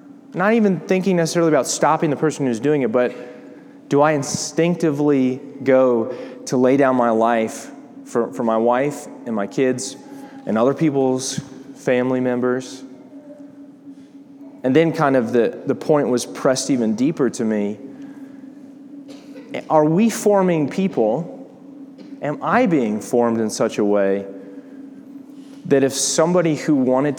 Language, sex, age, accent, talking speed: English, male, 20-39, American, 140 wpm